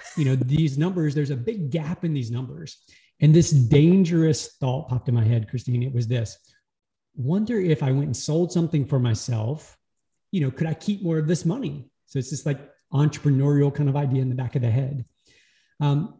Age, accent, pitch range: 30-49, American, 125-155 Hz